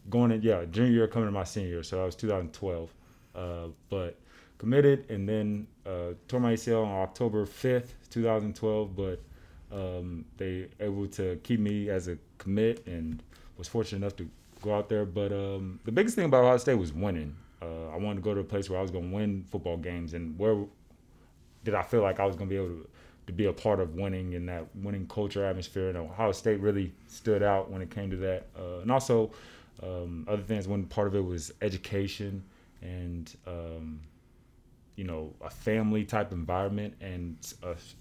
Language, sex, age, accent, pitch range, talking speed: English, male, 20-39, American, 85-105 Hz, 200 wpm